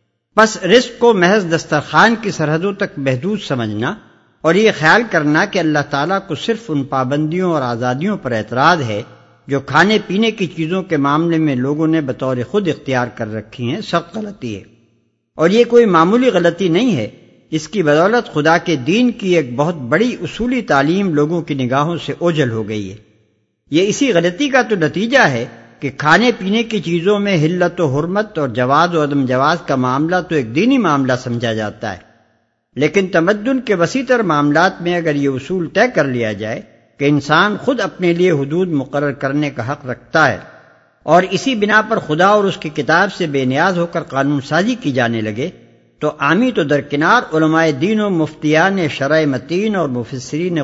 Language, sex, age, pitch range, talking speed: Urdu, male, 60-79, 135-190 Hz, 185 wpm